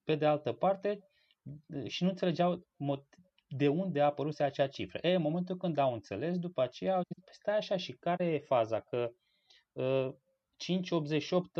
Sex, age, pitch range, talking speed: male, 20-39, 110-145 Hz, 155 wpm